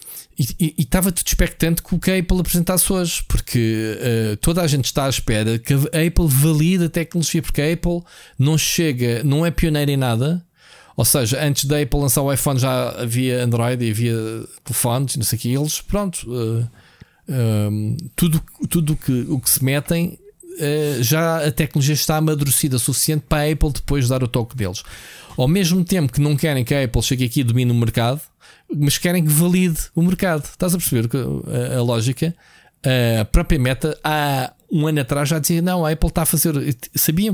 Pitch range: 125-165 Hz